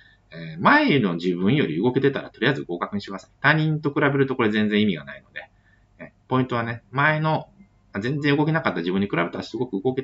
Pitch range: 95-120 Hz